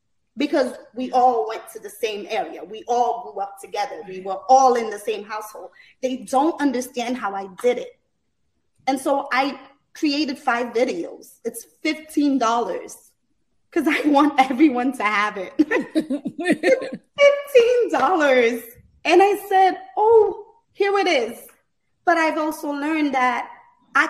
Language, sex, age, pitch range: English, female, 20-39, 245-310 Hz